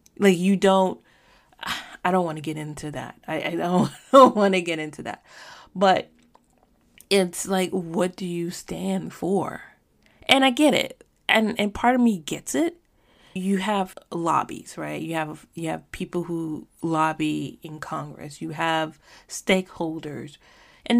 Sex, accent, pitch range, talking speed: female, American, 155-195 Hz, 155 wpm